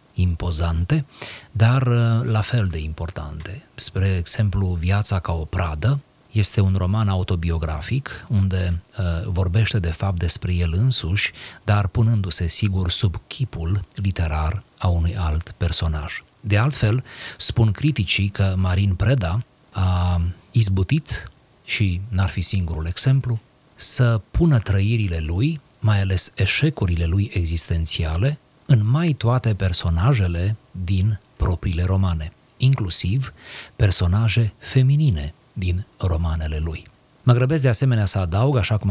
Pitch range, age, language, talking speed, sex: 90-115 Hz, 40-59, Romanian, 120 wpm, male